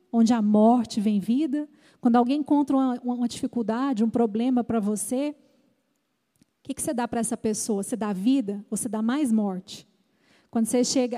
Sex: female